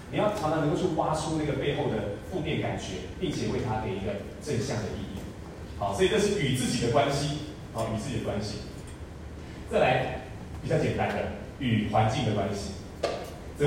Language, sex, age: Chinese, male, 30-49